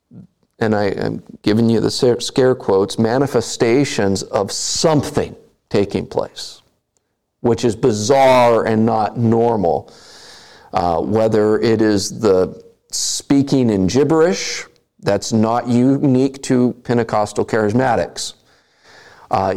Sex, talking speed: male, 100 wpm